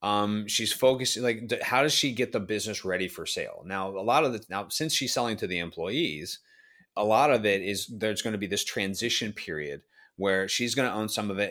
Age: 30-49